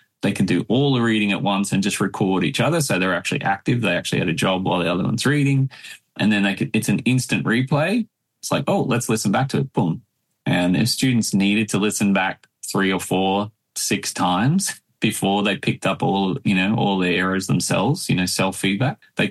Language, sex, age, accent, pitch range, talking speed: English, male, 20-39, Australian, 95-125 Hz, 215 wpm